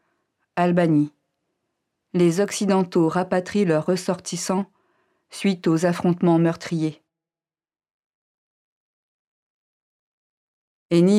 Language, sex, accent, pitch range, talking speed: French, female, French, 160-180 Hz, 60 wpm